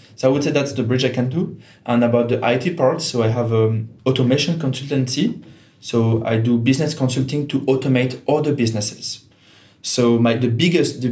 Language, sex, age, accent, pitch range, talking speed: English, male, 20-39, French, 115-140 Hz, 200 wpm